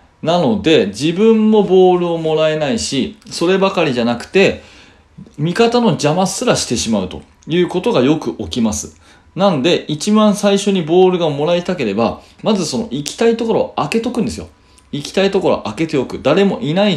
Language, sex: Japanese, male